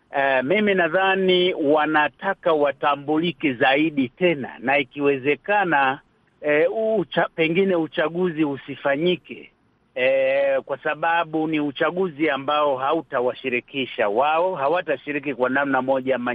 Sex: male